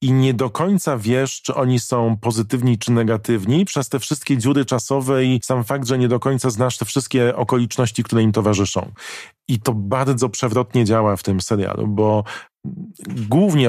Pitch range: 110-130 Hz